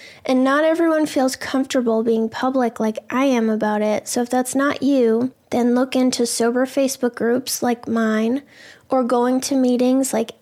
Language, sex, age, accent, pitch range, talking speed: English, female, 20-39, American, 235-265 Hz, 175 wpm